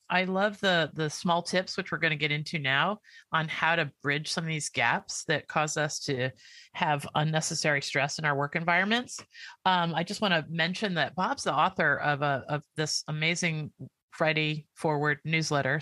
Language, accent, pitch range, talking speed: English, American, 145-175 Hz, 190 wpm